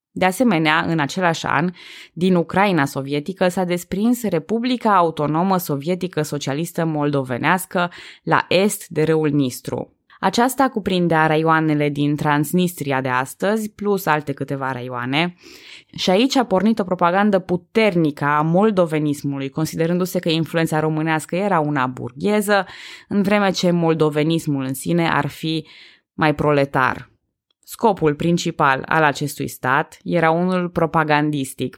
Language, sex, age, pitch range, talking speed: Romanian, female, 20-39, 150-185 Hz, 125 wpm